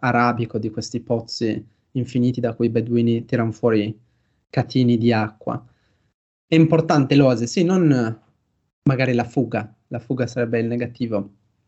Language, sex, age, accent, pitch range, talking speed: Italian, male, 20-39, native, 115-135 Hz, 140 wpm